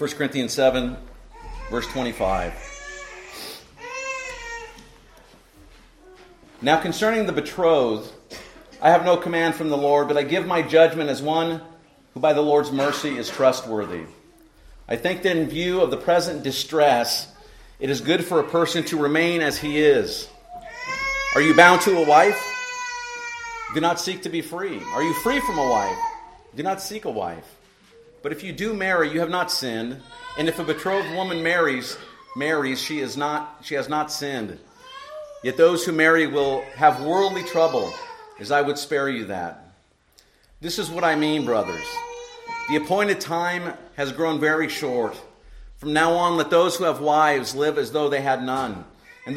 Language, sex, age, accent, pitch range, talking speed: English, male, 40-59, American, 145-195 Hz, 170 wpm